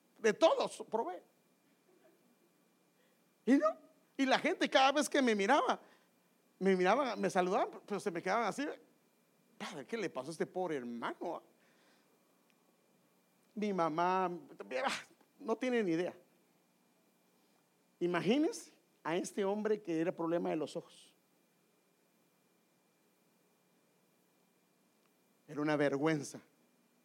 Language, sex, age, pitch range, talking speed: English, male, 50-69, 130-195 Hz, 105 wpm